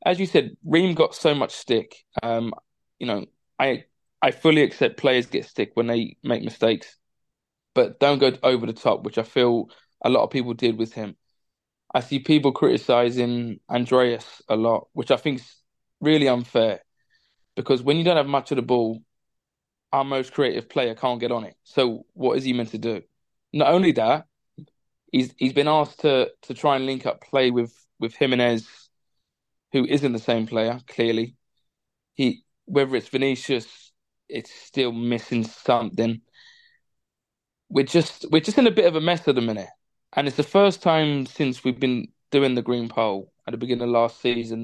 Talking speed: 185 wpm